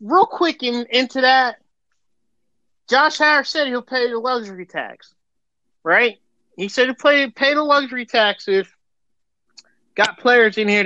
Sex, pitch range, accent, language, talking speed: male, 200-270 Hz, American, English, 150 wpm